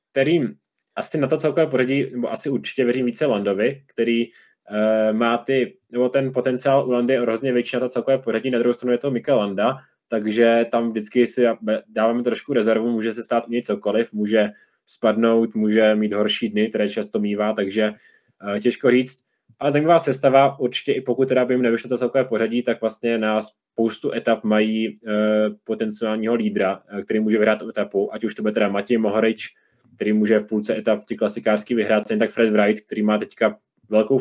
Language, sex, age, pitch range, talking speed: Czech, male, 20-39, 110-125 Hz, 195 wpm